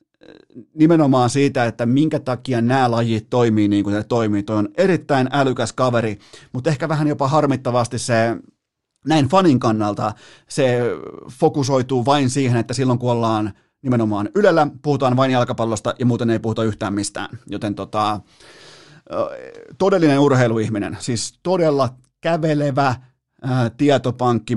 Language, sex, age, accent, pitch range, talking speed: Finnish, male, 30-49, native, 115-145 Hz, 125 wpm